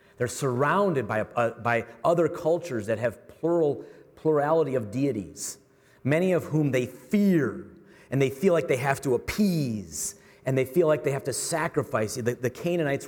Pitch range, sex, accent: 115-150 Hz, male, American